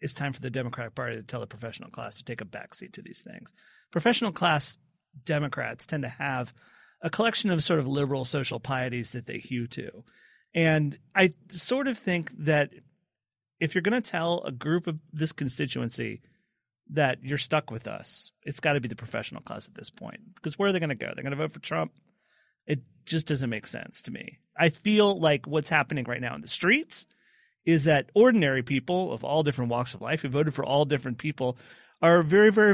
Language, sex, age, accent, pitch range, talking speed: English, male, 30-49, American, 130-175 Hz, 215 wpm